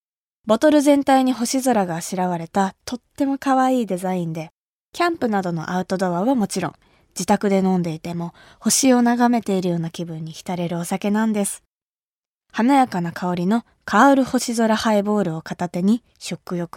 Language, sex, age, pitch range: Japanese, female, 20-39, 185-260 Hz